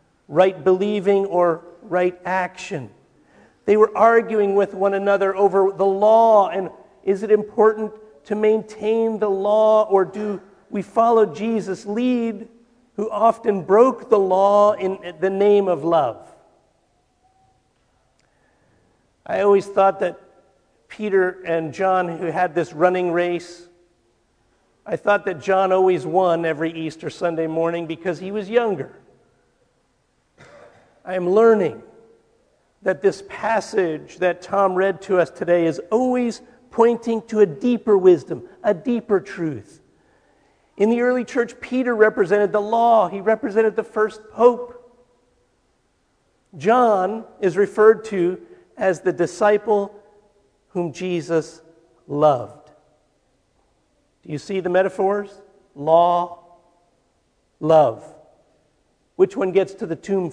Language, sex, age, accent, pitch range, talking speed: English, male, 50-69, American, 175-220 Hz, 120 wpm